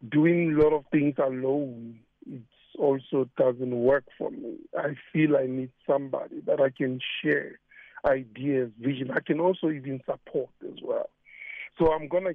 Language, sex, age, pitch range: English, male, 50-69, 135-170 Hz